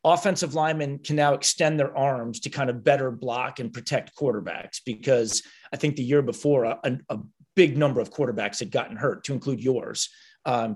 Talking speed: 190 wpm